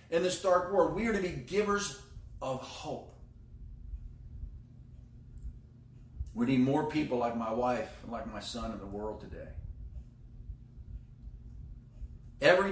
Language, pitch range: English, 120-175 Hz